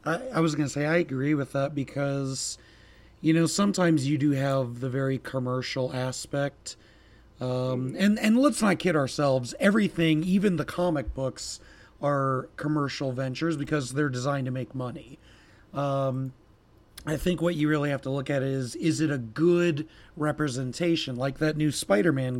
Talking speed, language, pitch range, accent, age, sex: 165 wpm, English, 125-155 Hz, American, 30-49, male